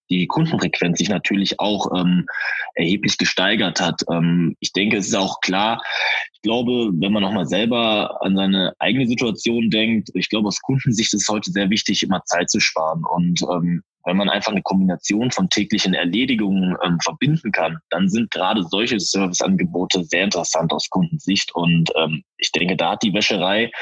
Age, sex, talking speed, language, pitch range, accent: 20-39, male, 180 wpm, German, 90-120 Hz, German